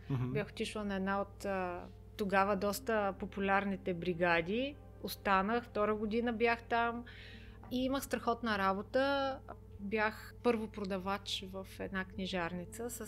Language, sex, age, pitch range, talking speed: Bulgarian, female, 30-49, 185-235 Hz, 110 wpm